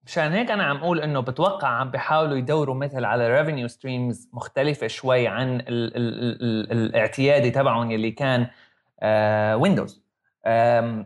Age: 20-39